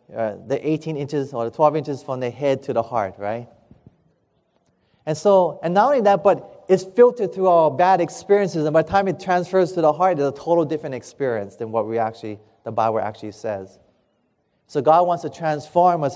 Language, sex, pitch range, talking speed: English, male, 150-205 Hz, 210 wpm